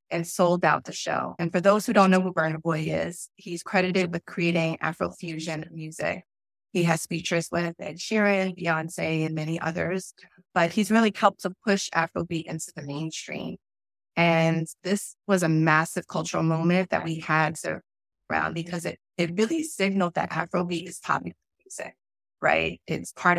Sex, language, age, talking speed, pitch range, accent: female, English, 20-39, 165 wpm, 160-185 Hz, American